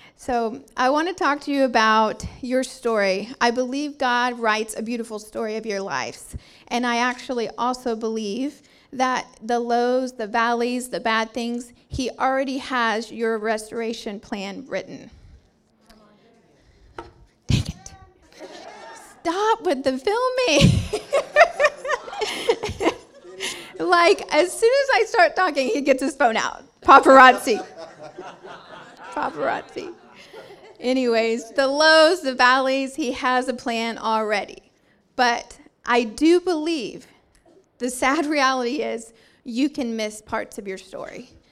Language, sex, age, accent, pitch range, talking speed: English, female, 40-59, American, 230-275 Hz, 125 wpm